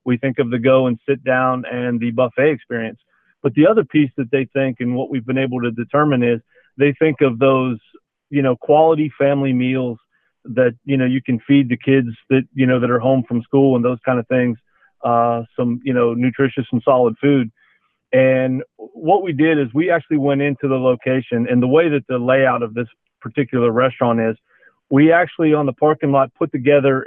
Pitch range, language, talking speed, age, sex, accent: 125-145 Hz, English, 210 wpm, 40-59, male, American